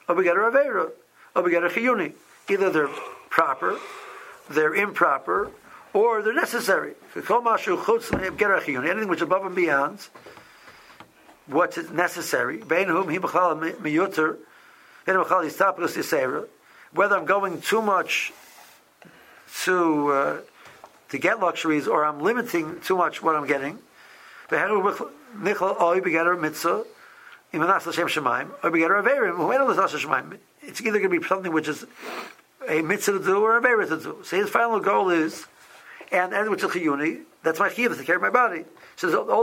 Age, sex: 60-79, male